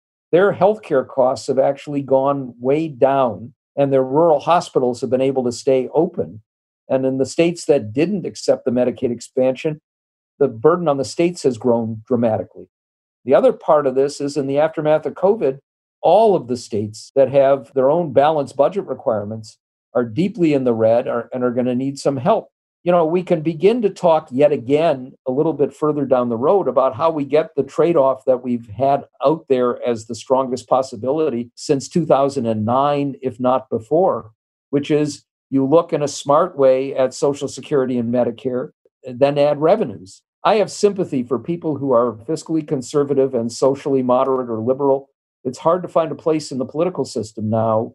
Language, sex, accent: English, male, American